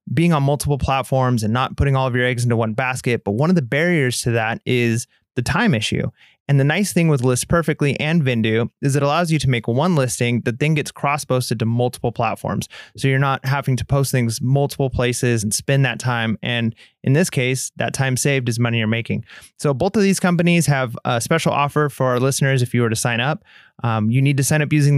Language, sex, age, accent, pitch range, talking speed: English, male, 30-49, American, 120-145 Hz, 235 wpm